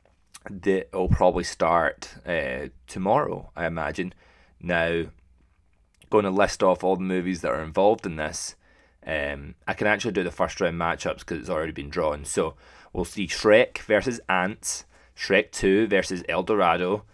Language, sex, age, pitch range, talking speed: English, male, 20-39, 80-95 Hz, 160 wpm